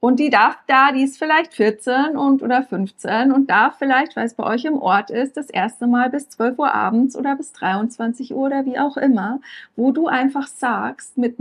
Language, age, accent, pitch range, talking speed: German, 40-59, German, 220-275 Hz, 215 wpm